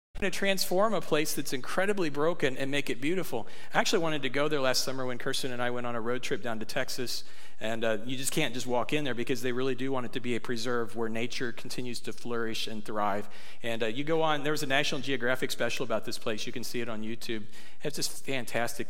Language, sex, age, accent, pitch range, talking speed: English, male, 40-59, American, 125-165 Hz, 255 wpm